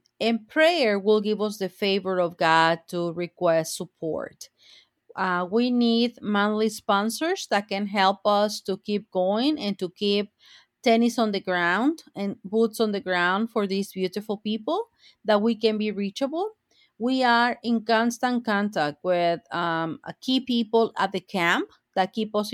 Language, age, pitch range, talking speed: English, 40-59, 190-230 Hz, 160 wpm